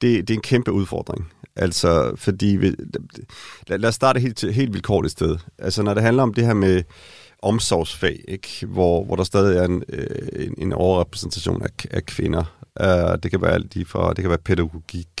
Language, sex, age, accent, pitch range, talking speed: Danish, male, 30-49, native, 90-110 Hz, 190 wpm